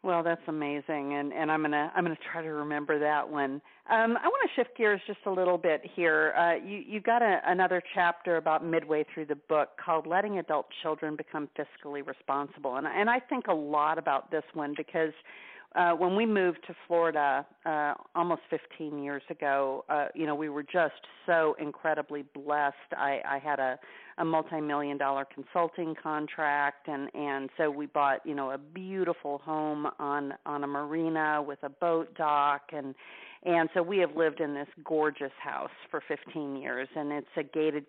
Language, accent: English, American